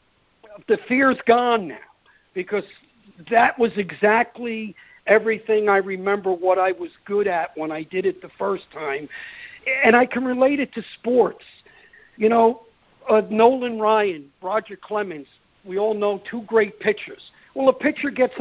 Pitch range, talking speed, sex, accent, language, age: 190-255 Hz, 155 wpm, male, American, English, 50-69